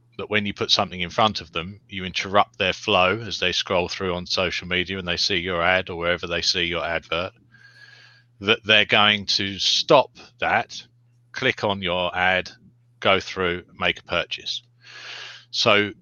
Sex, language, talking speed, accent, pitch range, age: male, English, 175 wpm, British, 90-120 Hz, 30-49